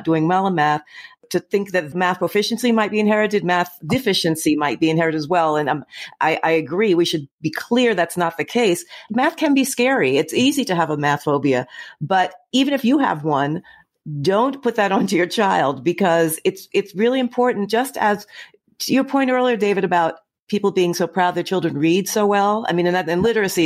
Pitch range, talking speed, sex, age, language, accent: 165-230 Hz, 210 wpm, female, 50-69, English, American